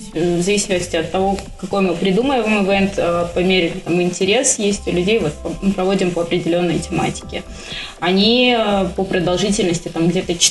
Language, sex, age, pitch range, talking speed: Russian, female, 20-39, 180-210 Hz, 150 wpm